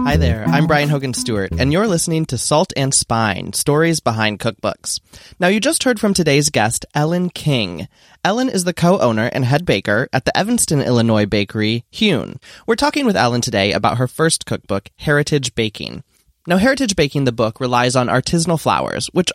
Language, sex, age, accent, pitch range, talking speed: English, male, 20-39, American, 115-165 Hz, 185 wpm